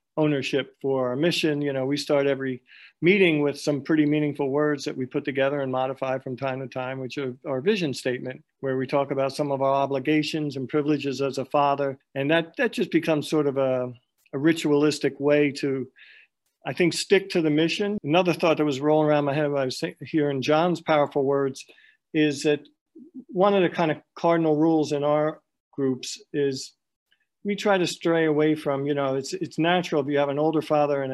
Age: 50-69